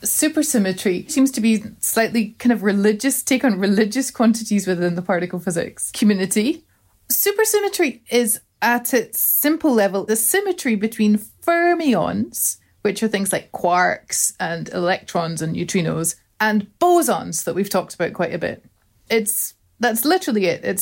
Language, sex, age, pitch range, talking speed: English, female, 30-49, 190-255 Hz, 145 wpm